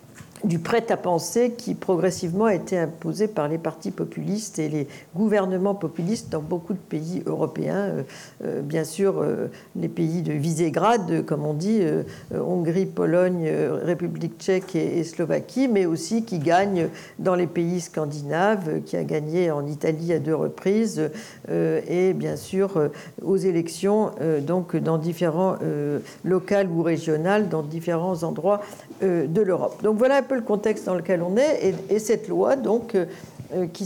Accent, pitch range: French, 165-210 Hz